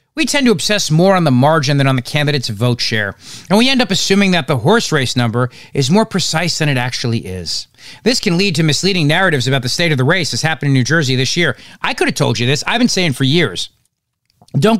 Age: 40-59